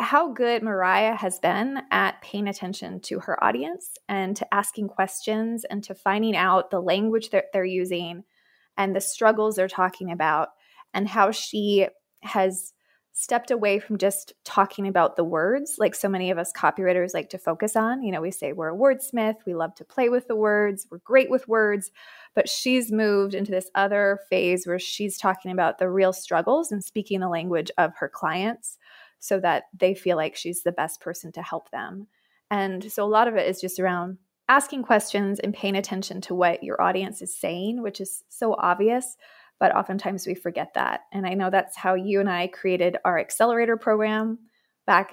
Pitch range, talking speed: 185-220 Hz, 195 wpm